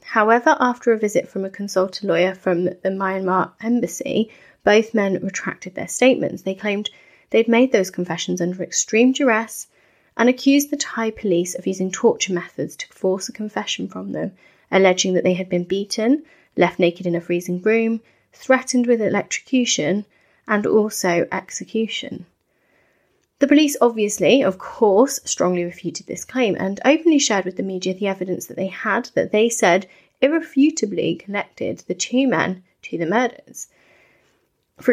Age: 30-49